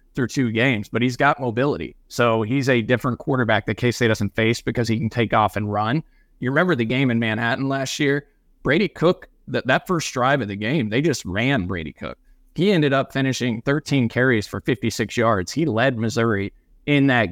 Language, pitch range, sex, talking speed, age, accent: English, 110-130 Hz, male, 205 wpm, 20-39, American